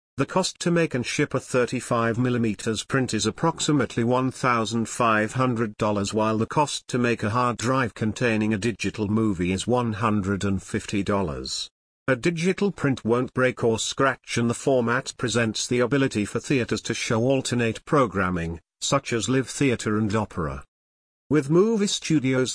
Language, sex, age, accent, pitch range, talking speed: English, male, 50-69, British, 110-135 Hz, 145 wpm